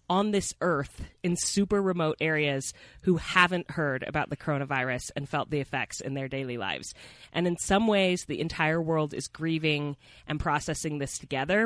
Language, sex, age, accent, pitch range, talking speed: English, female, 30-49, American, 145-175 Hz, 175 wpm